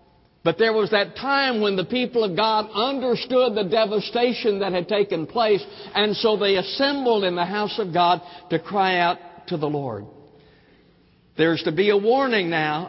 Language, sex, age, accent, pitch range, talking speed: English, male, 60-79, American, 185-225 Hz, 175 wpm